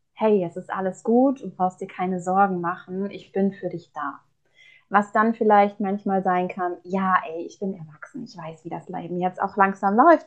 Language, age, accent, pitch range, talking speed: German, 20-39, German, 185-230 Hz, 210 wpm